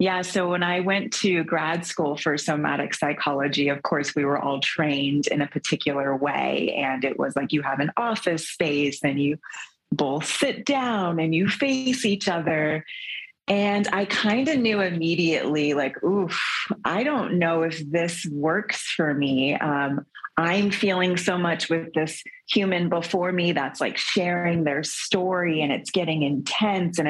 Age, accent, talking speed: 30-49, American, 170 wpm